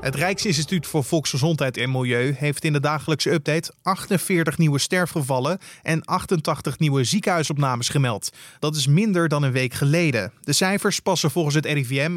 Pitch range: 135-175 Hz